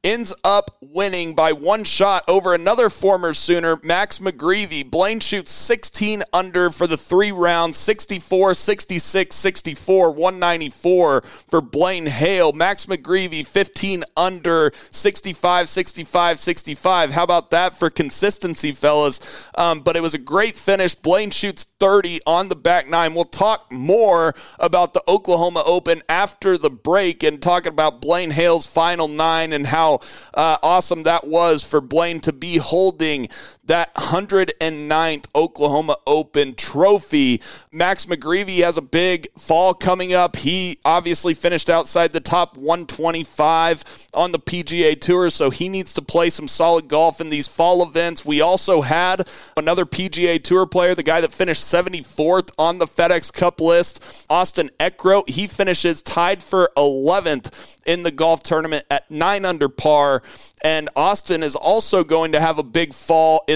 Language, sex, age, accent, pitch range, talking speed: English, male, 30-49, American, 160-185 Hz, 150 wpm